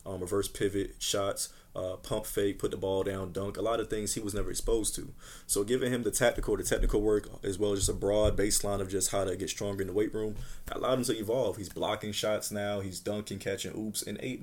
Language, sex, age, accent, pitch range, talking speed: English, male, 20-39, American, 95-110 Hz, 250 wpm